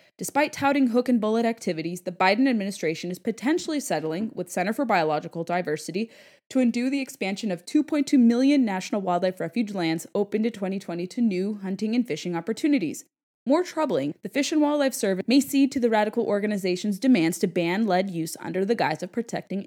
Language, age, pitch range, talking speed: English, 20-39, 180-245 Hz, 175 wpm